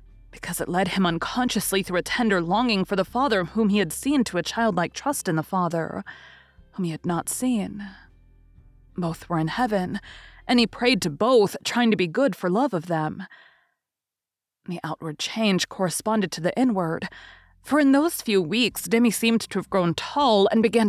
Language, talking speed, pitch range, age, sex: English, 185 wpm, 165-225 Hz, 20-39, female